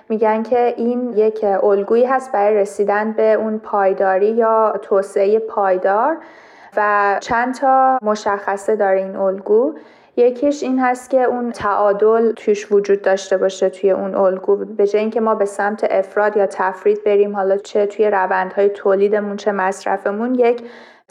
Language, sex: Persian, female